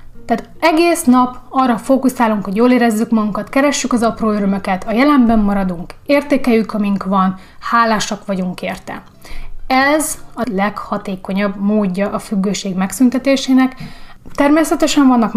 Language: Hungarian